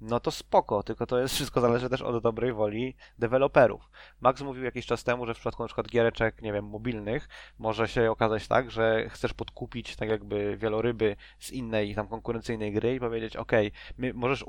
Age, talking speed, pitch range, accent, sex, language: 20-39, 195 wpm, 110-125 Hz, native, male, Polish